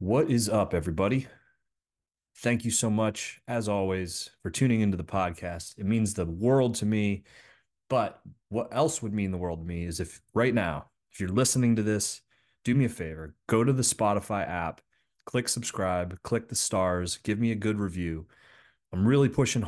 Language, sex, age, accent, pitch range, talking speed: English, male, 30-49, American, 95-115 Hz, 185 wpm